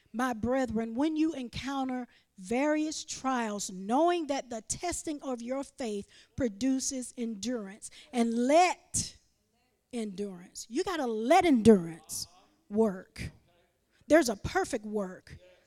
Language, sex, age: English, female, 40-59